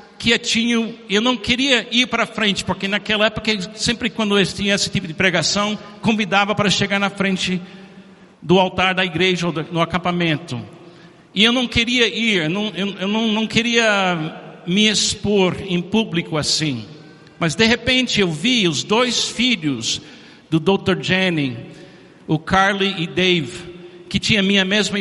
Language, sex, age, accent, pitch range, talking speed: Portuguese, male, 60-79, Brazilian, 175-215 Hz, 165 wpm